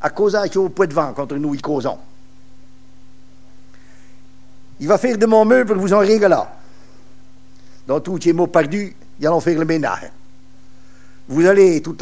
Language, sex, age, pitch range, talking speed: French, male, 60-79, 130-175 Hz, 170 wpm